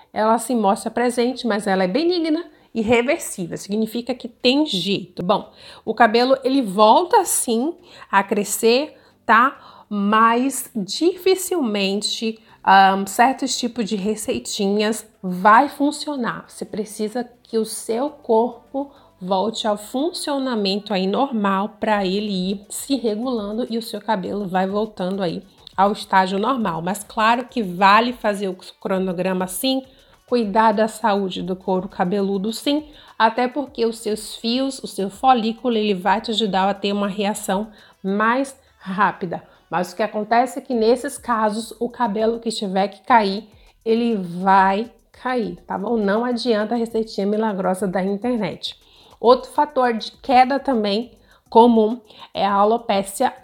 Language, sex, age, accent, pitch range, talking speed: Portuguese, female, 30-49, Brazilian, 200-245 Hz, 140 wpm